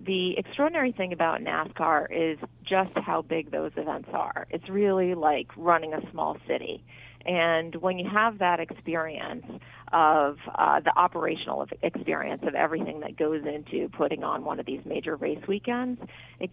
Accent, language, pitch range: American, English, 155-185 Hz